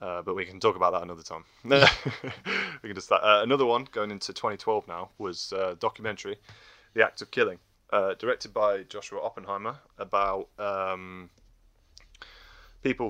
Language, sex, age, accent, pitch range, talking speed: English, male, 20-39, British, 90-120 Hz, 155 wpm